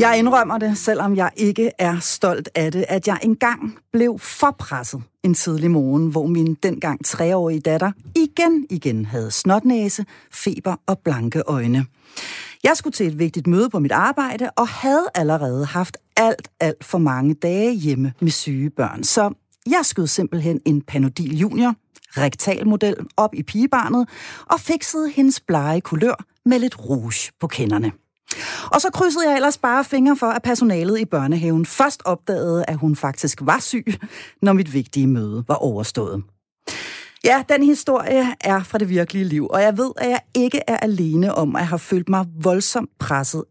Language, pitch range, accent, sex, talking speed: Danish, 155-235 Hz, native, female, 170 wpm